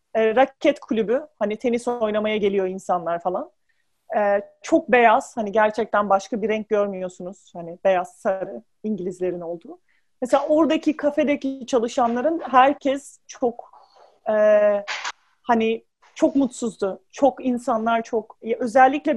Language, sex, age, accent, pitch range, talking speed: Turkish, male, 40-59, native, 220-270 Hz, 115 wpm